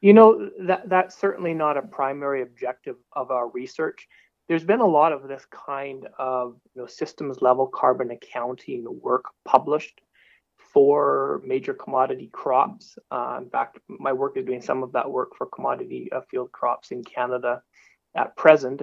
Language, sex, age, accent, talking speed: English, male, 30-49, American, 165 wpm